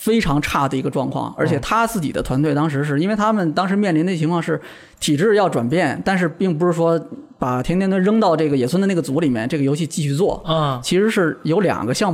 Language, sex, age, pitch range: Chinese, male, 20-39, 145-190 Hz